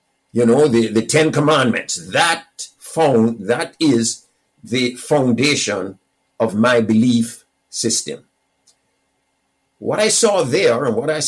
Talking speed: 120 wpm